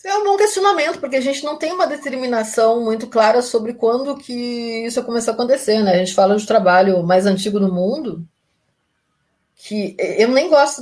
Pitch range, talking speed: 170-225 Hz, 195 wpm